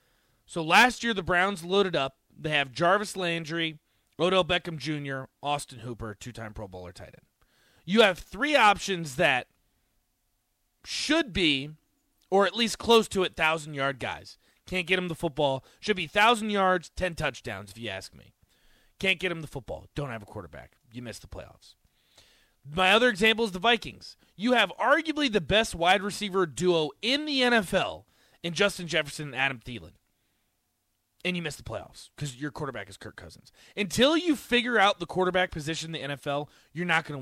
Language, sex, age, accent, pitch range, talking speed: English, male, 30-49, American, 145-210 Hz, 180 wpm